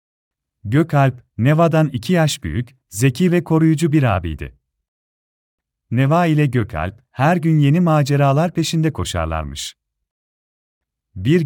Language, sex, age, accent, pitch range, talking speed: Turkish, male, 40-59, native, 90-155 Hz, 105 wpm